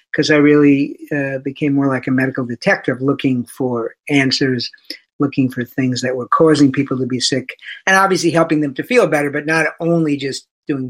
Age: 50-69